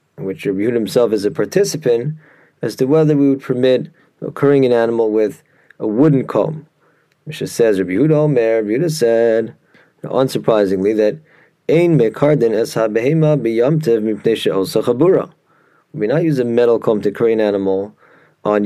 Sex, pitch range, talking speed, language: male, 115-155 Hz, 130 wpm, English